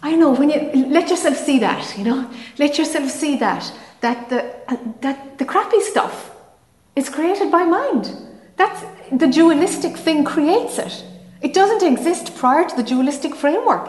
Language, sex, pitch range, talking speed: English, female, 220-295 Hz, 170 wpm